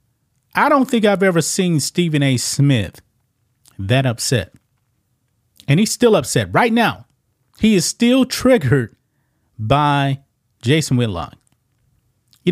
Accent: American